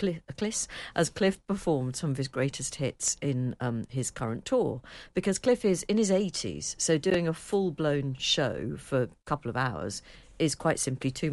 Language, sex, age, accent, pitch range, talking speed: English, female, 50-69, British, 130-165 Hz, 185 wpm